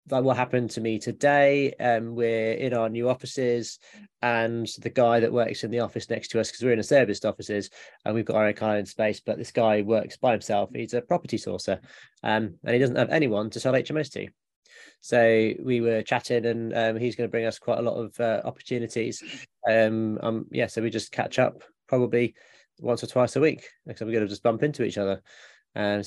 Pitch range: 110-125 Hz